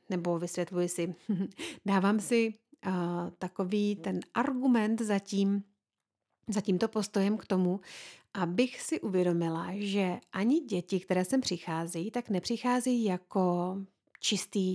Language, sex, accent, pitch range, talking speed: Czech, female, native, 175-215 Hz, 110 wpm